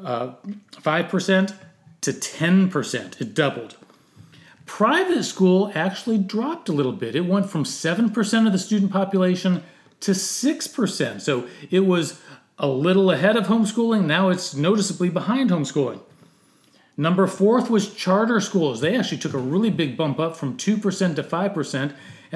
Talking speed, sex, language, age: 140 wpm, male, English, 40-59